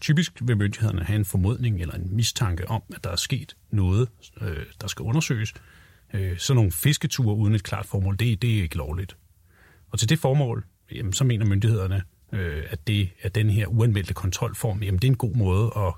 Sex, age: male, 30-49